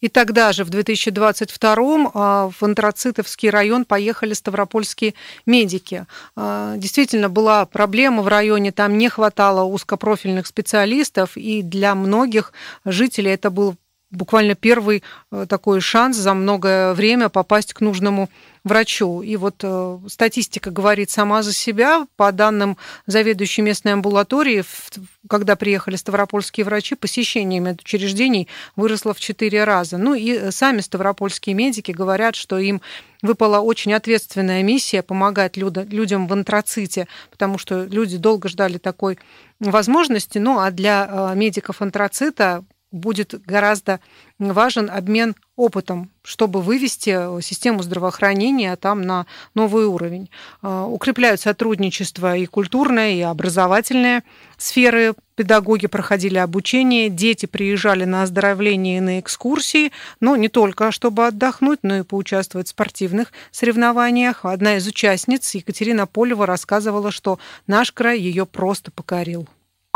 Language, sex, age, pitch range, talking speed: Russian, female, 40-59, 195-225 Hz, 120 wpm